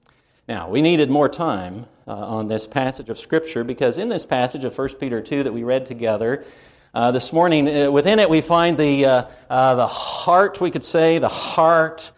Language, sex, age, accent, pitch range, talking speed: English, male, 50-69, American, 130-180 Hz, 200 wpm